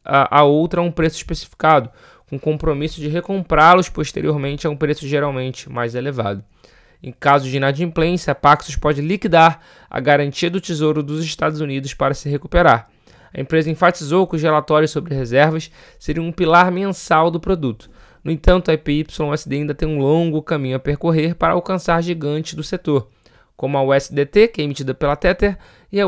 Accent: Brazilian